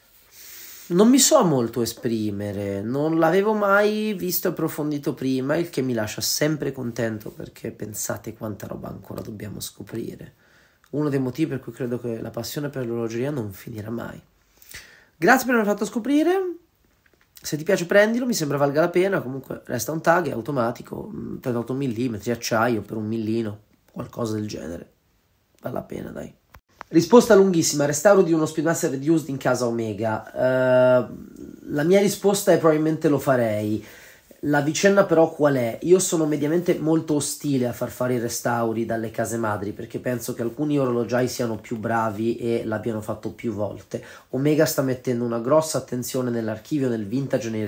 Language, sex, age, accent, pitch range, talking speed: Italian, male, 30-49, native, 115-160 Hz, 165 wpm